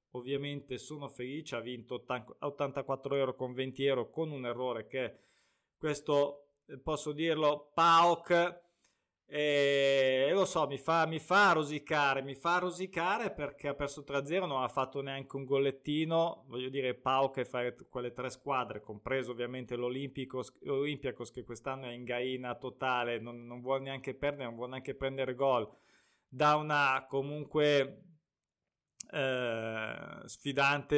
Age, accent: 20-39, native